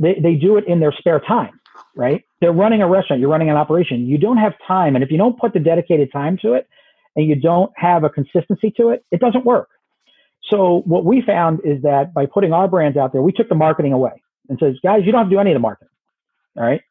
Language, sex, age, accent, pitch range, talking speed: English, male, 40-59, American, 135-185 Hz, 260 wpm